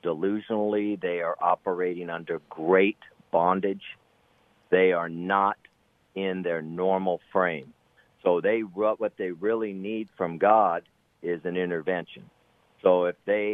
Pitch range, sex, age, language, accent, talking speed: 90-105 Hz, male, 50-69, English, American, 125 wpm